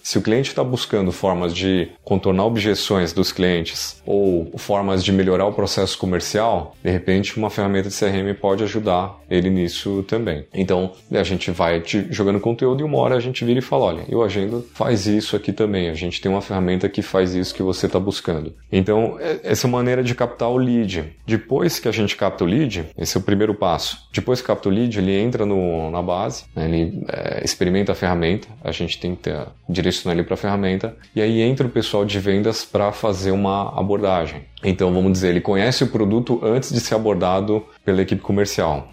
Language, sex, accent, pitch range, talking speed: Portuguese, male, Brazilian, 90-110 Hz, 205 wpm